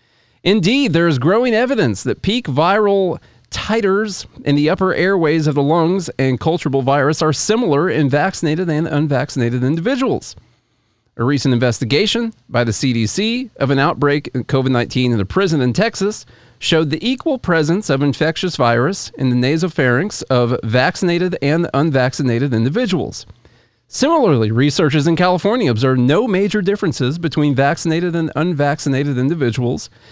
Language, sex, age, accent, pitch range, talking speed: English, male, 40-59, American, 125-180 Hz, 140 wpm